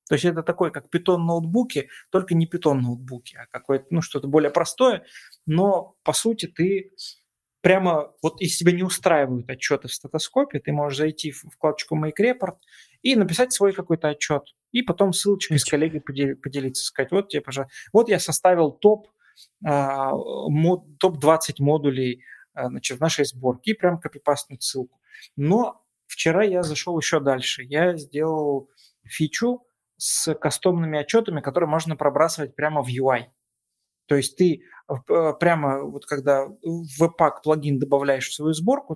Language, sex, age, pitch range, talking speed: Russian, male, 30-49, 145-180 Hz, 145 wpm